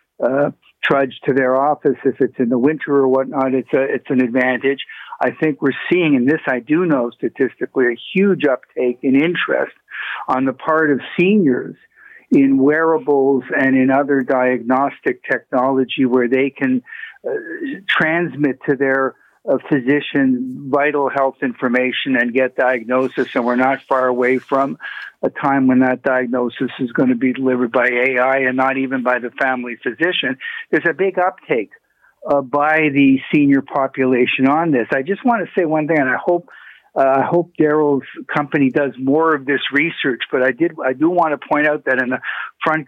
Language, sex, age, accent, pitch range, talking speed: English, male, 50-69, American, 130-155 Hz, 180 wpm